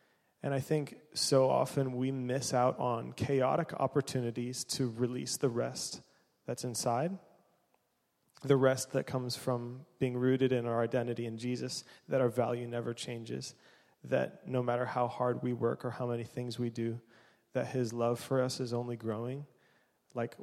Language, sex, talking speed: English, male, 165 wpm